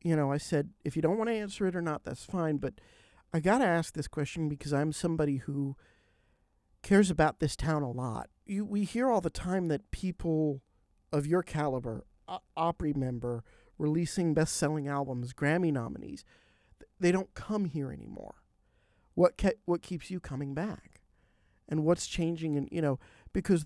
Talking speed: 180 wpm